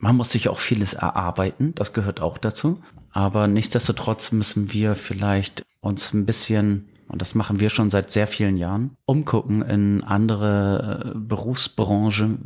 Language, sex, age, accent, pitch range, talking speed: German, male, 30-49, German, 105-125 Hz, 150 wpm